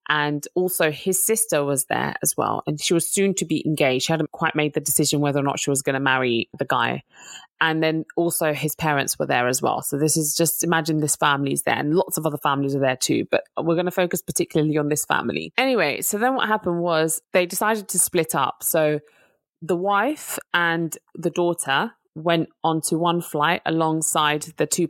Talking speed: 215 wpm